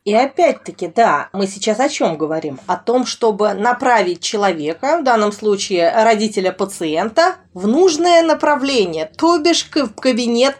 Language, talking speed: Russian, 140 wpm